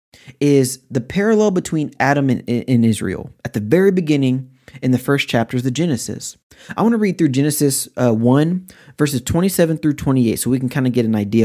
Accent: American